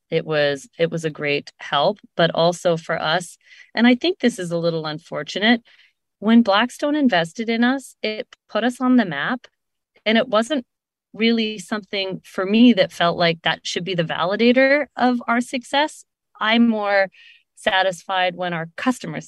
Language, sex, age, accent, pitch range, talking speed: English, female, 30-49, American, 145-215 Hz, 170 wpm